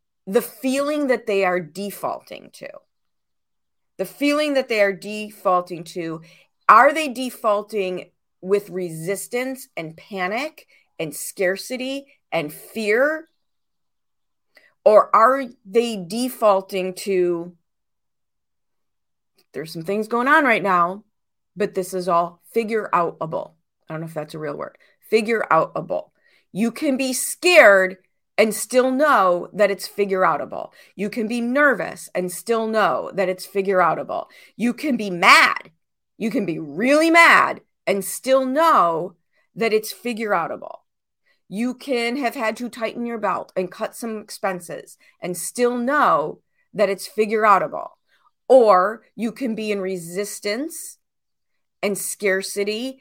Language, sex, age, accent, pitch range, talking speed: English, female, 40-59, American, 185-250 Hz, 130 wpm